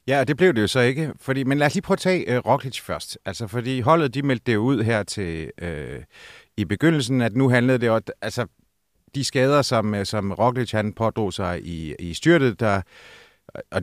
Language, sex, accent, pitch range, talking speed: Danish, male, native, 105-135 Hz, 220 wpm